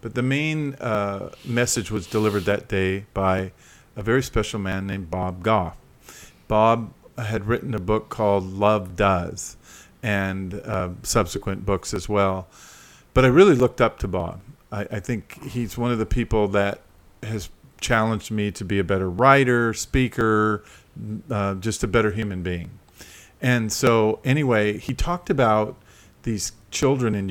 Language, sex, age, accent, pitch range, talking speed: English, male, 50-69, American, 100-120 Hz, 155 wpm